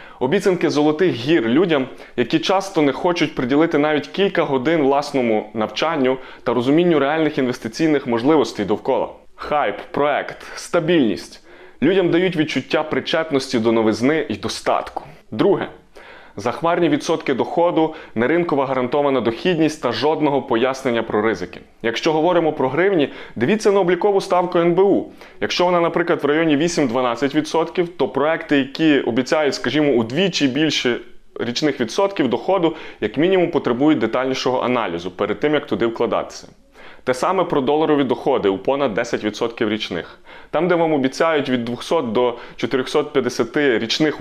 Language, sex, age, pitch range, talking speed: Ukrainian, male, 20-39, 125-160 Hz, 130 wpm